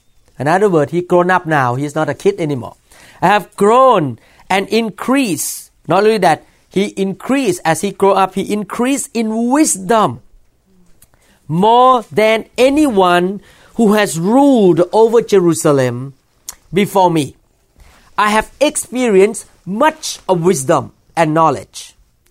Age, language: 40-59, English